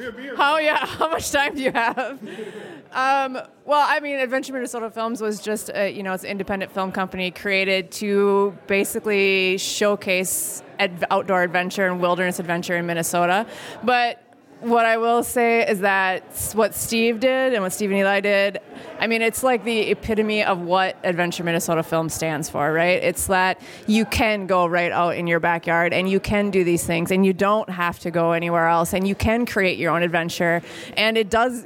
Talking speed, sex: 190 wpm, female